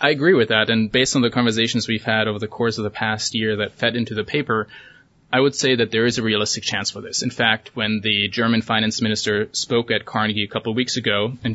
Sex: male